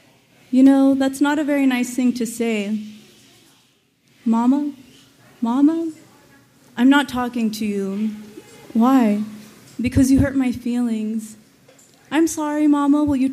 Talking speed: 125 wpm